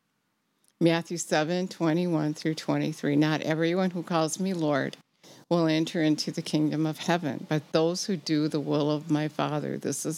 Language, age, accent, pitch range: English, 60-79, American, 155-190 Hz